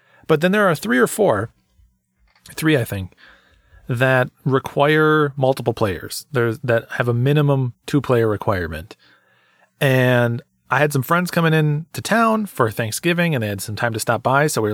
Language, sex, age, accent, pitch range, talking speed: English, male, 30-49, American, 115-150 Hz, 170 wpm